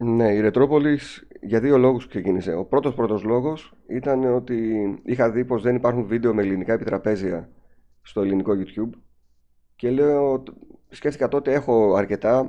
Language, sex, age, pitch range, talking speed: Greek, male, 30-49, 95-125 Hz, 150 wpm